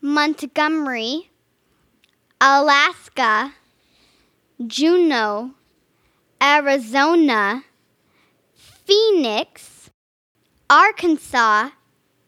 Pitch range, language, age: 260-325 Hz, English, 10-29